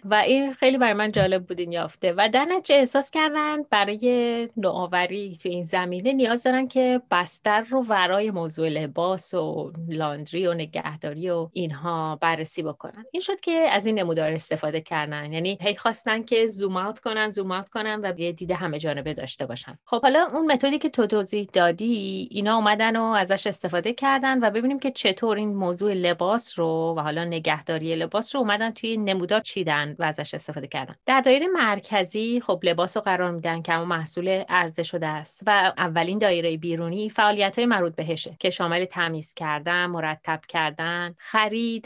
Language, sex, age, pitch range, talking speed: Persian, female, 30-49, 170-225 Hz, 170 wpm